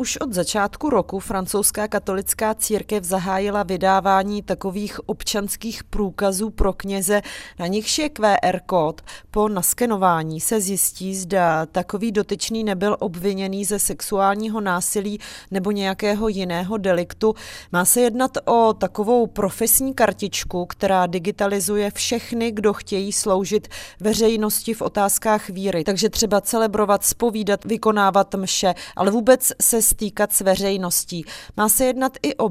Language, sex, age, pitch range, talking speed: Czech, female, 30-49, 195-220 Hz, 125 wpm